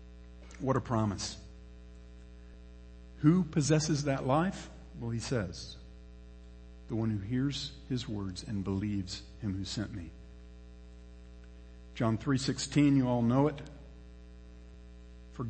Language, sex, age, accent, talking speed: English, male, 50-69, American, 110 wpm